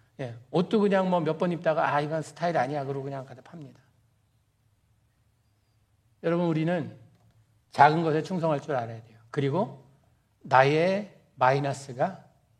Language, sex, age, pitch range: Korean, male, 60-79, 120-185 Hz